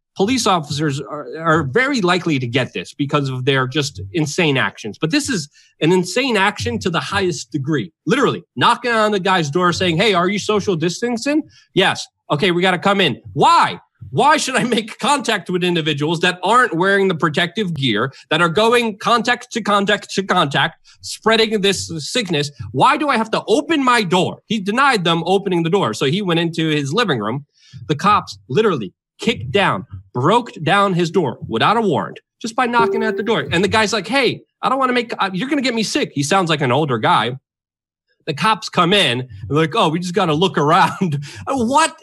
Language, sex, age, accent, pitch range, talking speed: English, male, 30-49, American, 150-220 Hz, 205 wpm